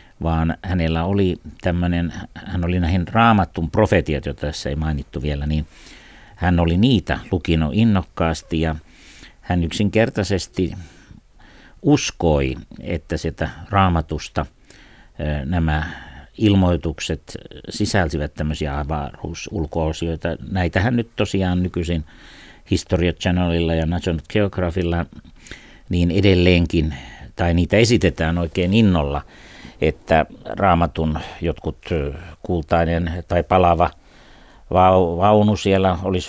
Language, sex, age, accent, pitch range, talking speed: Finnish, male, 60-79, native, 80-95 Hz, 95 wpm